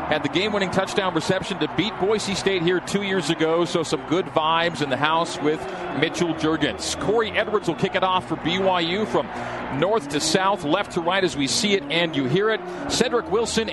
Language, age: English, 40-59